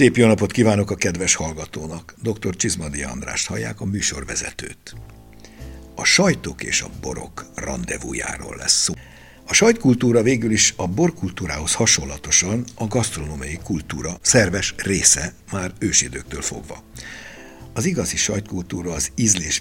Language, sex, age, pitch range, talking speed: Hungarian, male, 60-79, 80-110 Hz, 120 wpm